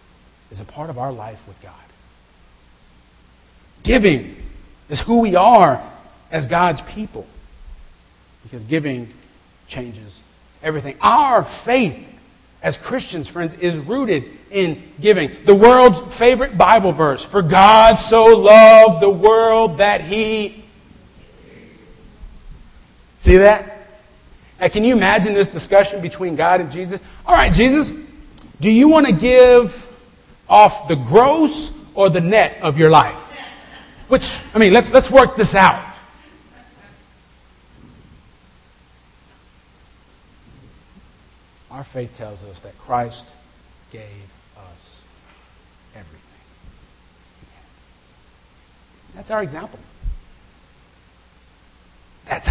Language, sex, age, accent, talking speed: English, male, 40-59, American, 105 wpm